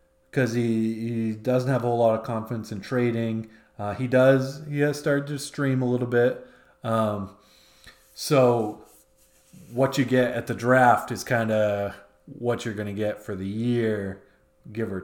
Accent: American